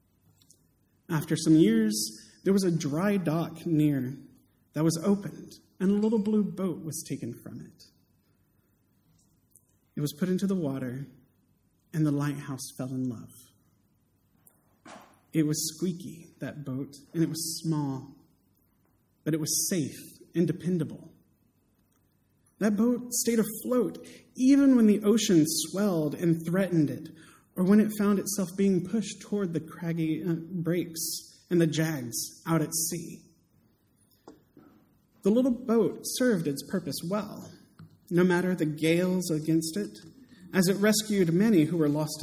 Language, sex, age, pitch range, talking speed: English, male, 30-49, 145-190 Hz, 140 wpm